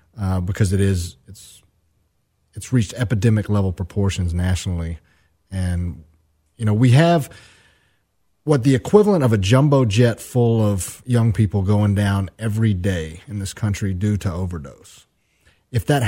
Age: 30-49